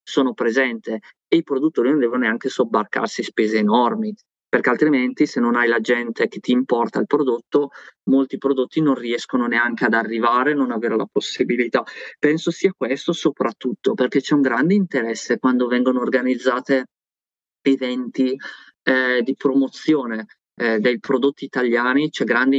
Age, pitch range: 20-39, 120-150 Hz